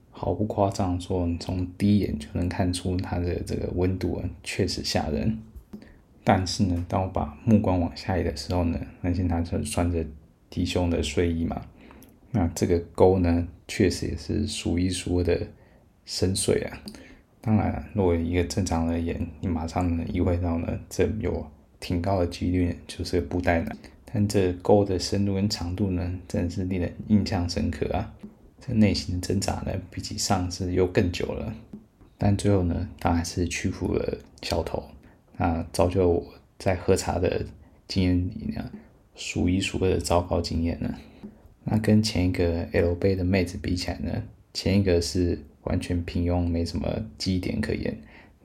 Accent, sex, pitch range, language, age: native, male, 85-100 Hz, Chinese, 20-39